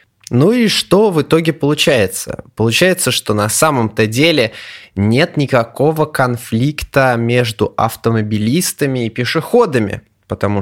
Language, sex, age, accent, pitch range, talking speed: Russian, male, 20-39, native, 105-145 Hz, 105 wpm